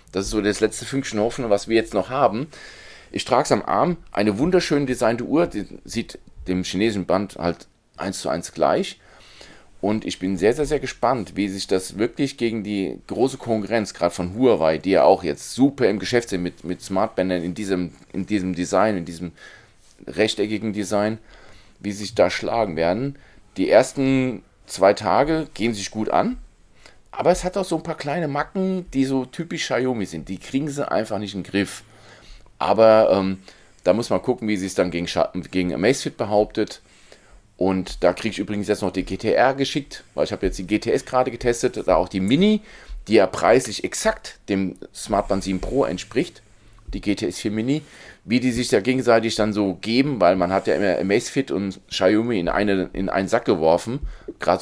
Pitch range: 95-130 Hz